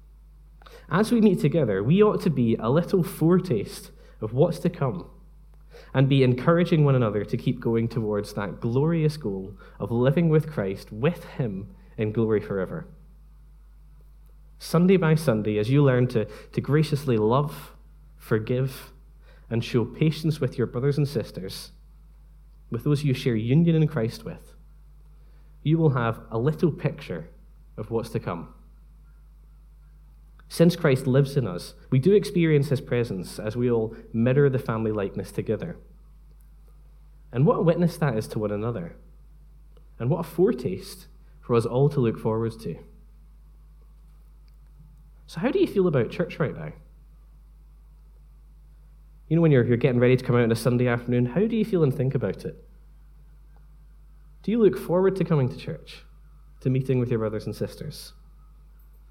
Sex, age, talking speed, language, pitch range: male, 10-29, 160 wpm, English, 120-160 Hz